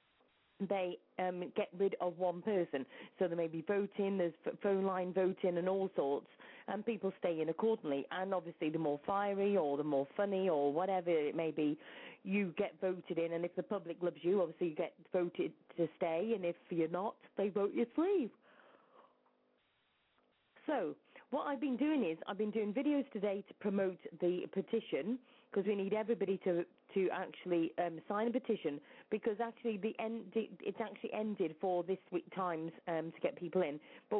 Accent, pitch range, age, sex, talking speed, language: British, 175-225 Hz, 40-59, female, 185 wpm, English